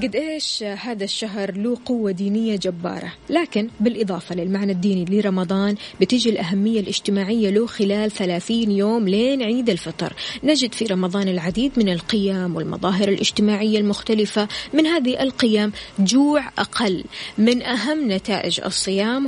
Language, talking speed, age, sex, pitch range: Arabic, 130 wpm, 20-39, female, 185-230 Hz